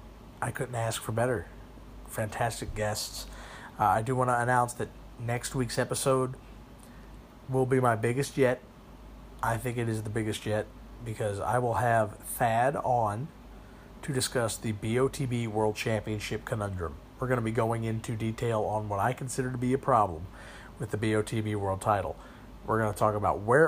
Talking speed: 170 wpm